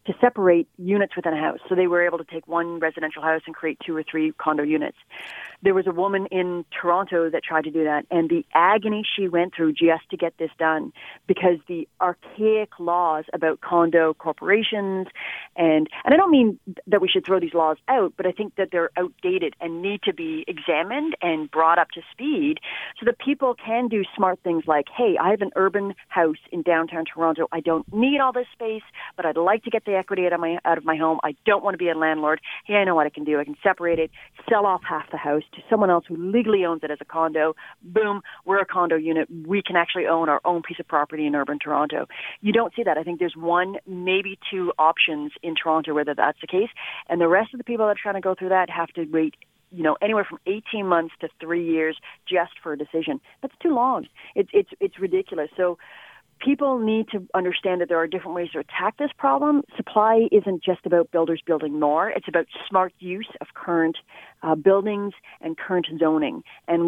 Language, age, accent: English, 40-59, American